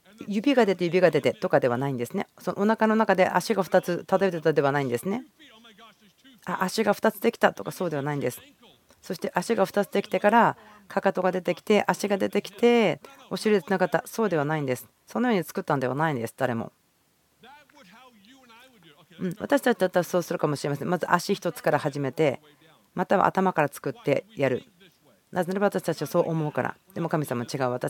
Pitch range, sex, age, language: 155-220 Hz, female, 40-59, Japanese